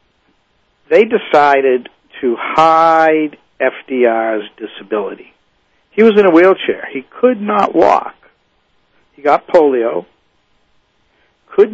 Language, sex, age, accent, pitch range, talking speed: English, male, 60-79, American, 125-165 Hz, 95 wpm